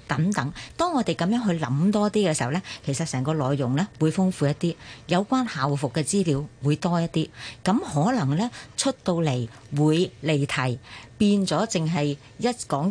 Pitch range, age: 140-190 Hz, 50-69